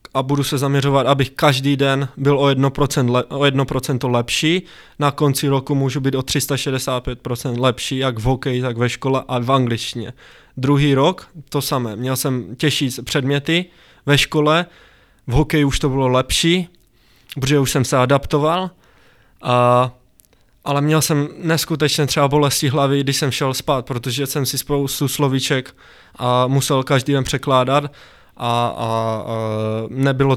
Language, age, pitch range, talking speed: Czech, 20-39, 125-140 Hz, 150 wpm